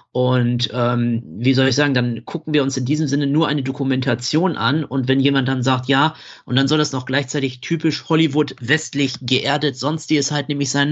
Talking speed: 215 wpm